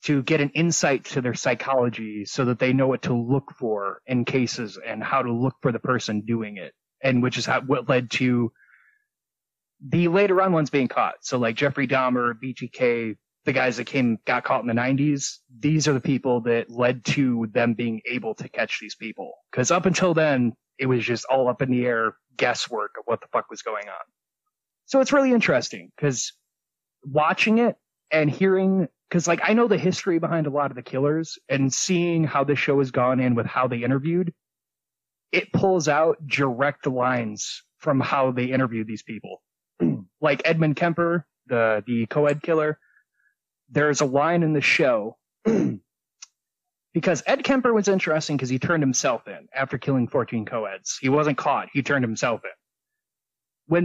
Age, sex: 30-49, male